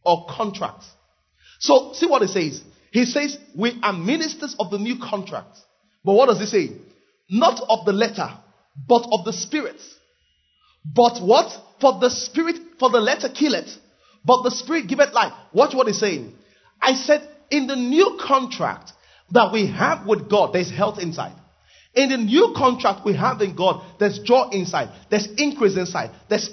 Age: 30-49